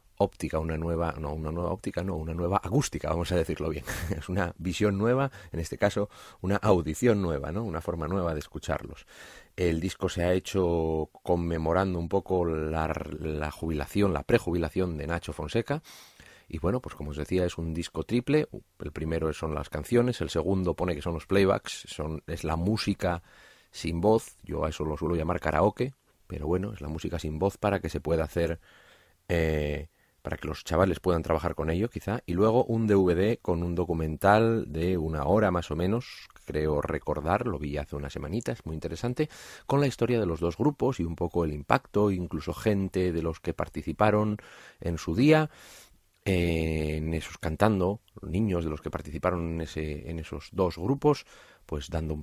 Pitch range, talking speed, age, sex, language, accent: 80-100 Hz, 190 wpm, 40-59, male, Spanish, Spanish